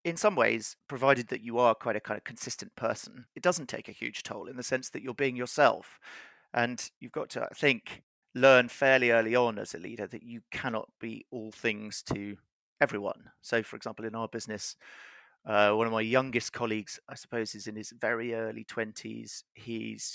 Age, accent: 30-49, British